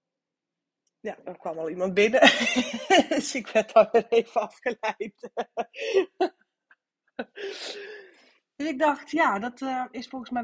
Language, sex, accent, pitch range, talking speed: Dutch, female, Dutch, 190-255 Hz, 125 wpm